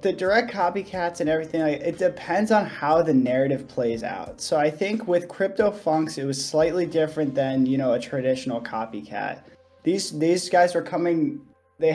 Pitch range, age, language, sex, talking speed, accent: 130-170 Hz, 10-29, English, male, 175 wpm, American